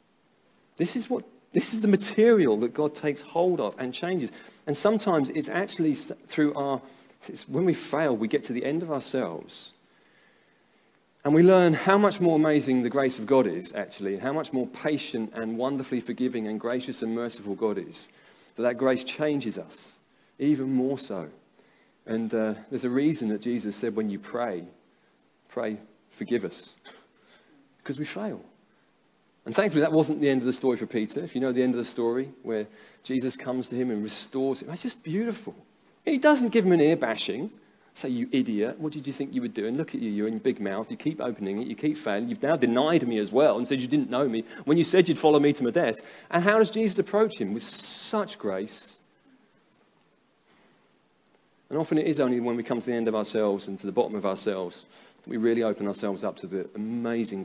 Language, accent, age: English, British, 40-59